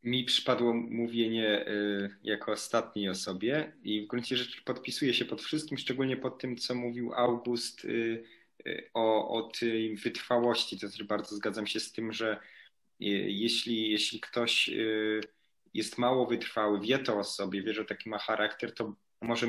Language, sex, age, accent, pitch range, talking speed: Polish, male, 20-39, native, 110-125 Hz, 150 wpm